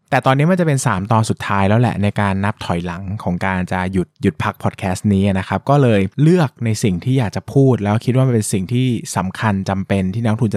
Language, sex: Thai, male